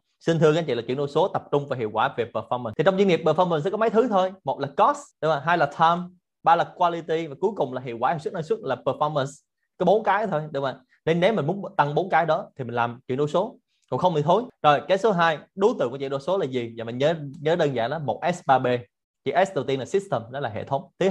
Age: 20-39